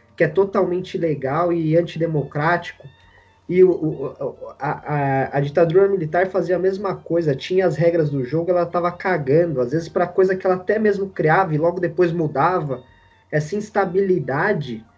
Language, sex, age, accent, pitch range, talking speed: Portuguese, male, 20-39, Brazilian, 145-195 Hz, 155 wpm